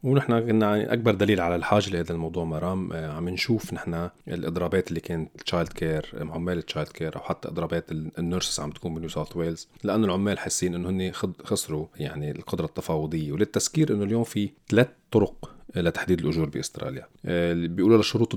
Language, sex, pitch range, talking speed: Arabic, male, 85-105 Hz, 165 wpm